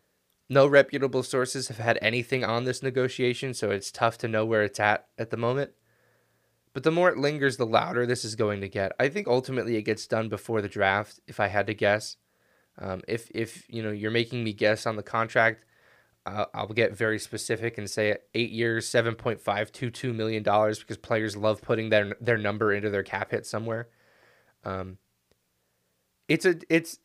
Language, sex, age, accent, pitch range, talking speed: English, male, 20-39, American, 105-130 Hz, 190 wpm